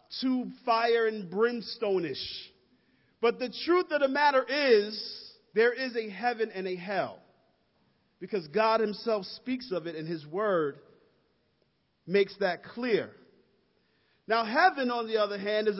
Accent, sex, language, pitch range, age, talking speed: American, male, English, 210-260 Hz, 40-59, 140 wpm